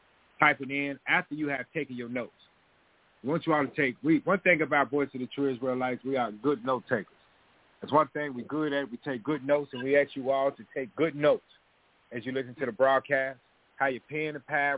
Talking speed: 240 wpm